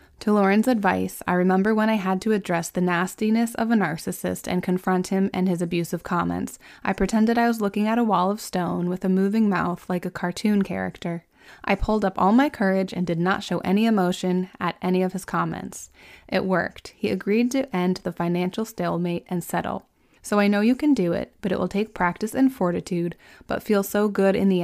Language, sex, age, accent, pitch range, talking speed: English, female, 20-39, American, 175-210 Hz, 215 wpm